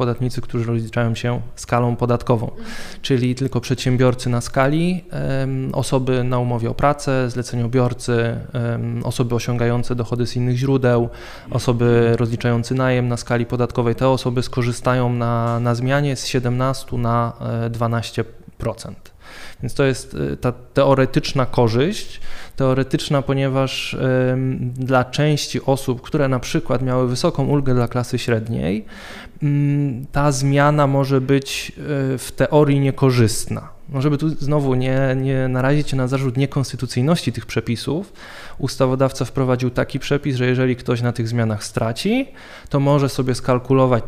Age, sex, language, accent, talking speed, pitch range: 20-39, male, Polish, native, 125 wpm, 120-140 Hz